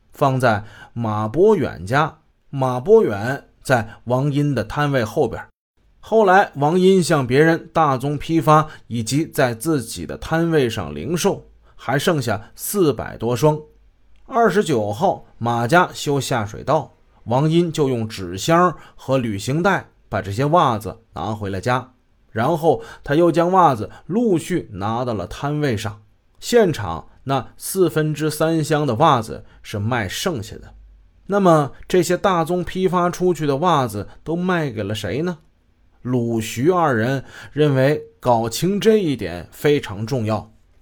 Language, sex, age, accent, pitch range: Chinese, male, 20-39, native, 110-165 Hz